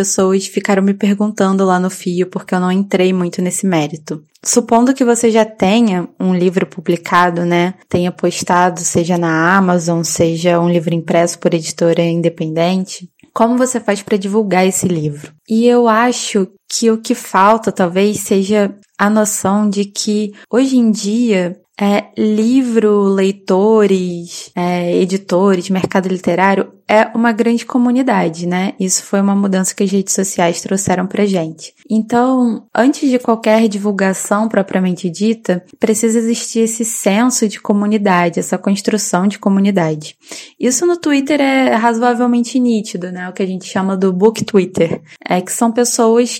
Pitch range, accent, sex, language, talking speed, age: 180-230 Hz, Brazilian, female, Portuguese, 150 wpm, 20-39